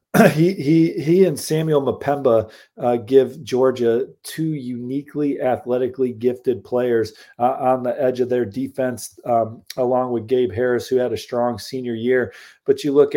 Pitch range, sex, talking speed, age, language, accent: 115-135 Hz, male, 160 wpm, 40-59, English, American